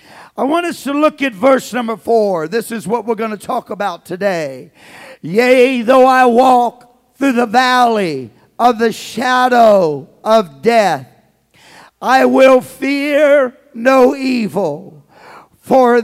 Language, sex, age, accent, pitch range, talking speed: English, male, 50-69, American, 245-275 Hz, 135 wpm